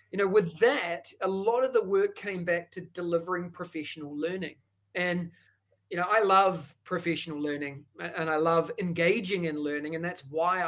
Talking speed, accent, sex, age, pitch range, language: 175 wpm, Australian, male, 30-49, 165-195 Hz, English